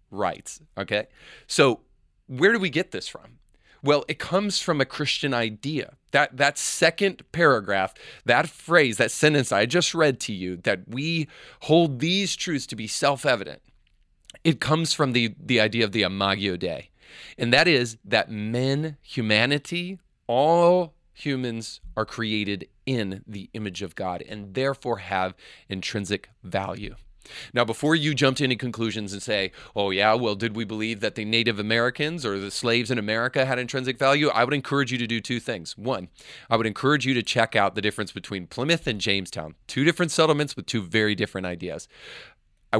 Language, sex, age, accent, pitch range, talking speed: English, male, 30-49, American, 105-145 Hz, 175 wpm